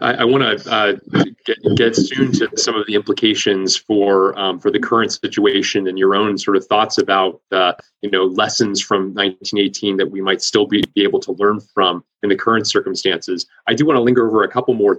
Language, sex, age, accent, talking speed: English, male, 30-49, American, 220 wpm